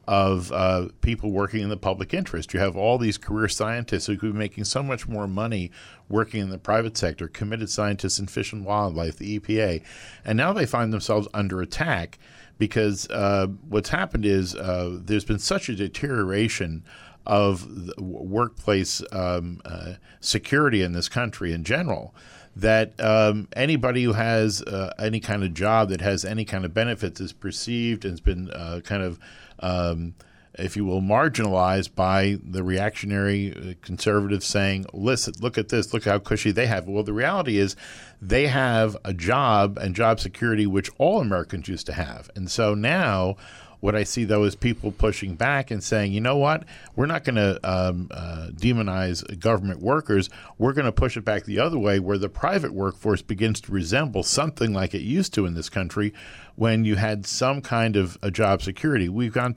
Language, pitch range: English, 95-115 Hz